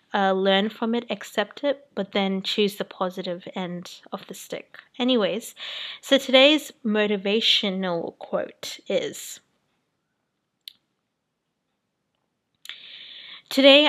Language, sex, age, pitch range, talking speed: English, female, 20-39, 190-230 Hz, 95 wpm